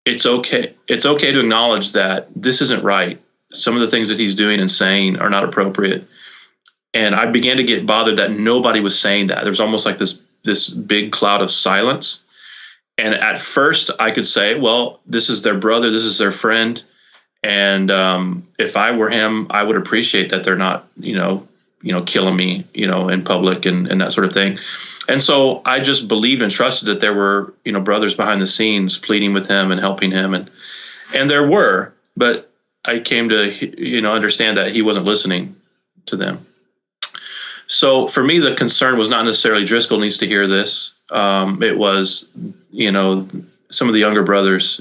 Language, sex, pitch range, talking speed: English, male, 95-110 Hz, 195 wpm